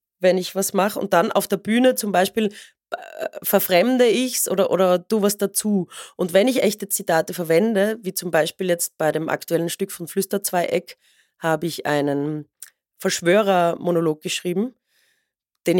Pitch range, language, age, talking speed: 175-215 Hz, German, 30-49, 155 wpm